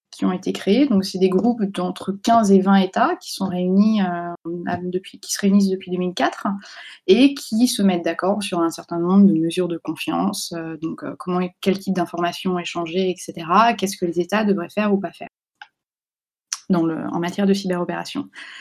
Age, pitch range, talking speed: 20-39, 175-210 Hz, 200 wpm